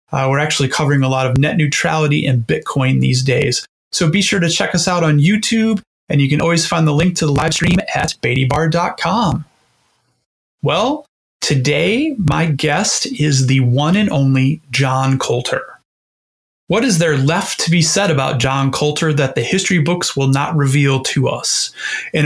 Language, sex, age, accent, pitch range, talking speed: English, male, 30-49, American, 140-175 Hz, 180 wpm